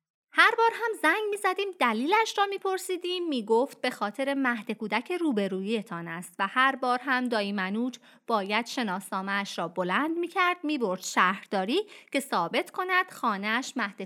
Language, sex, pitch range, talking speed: Persian, female, 200-325 Hz, 160 wpm